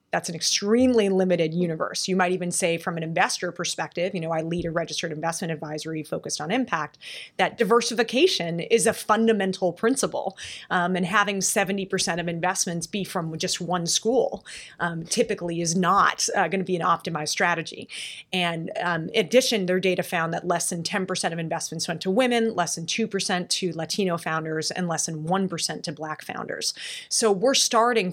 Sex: female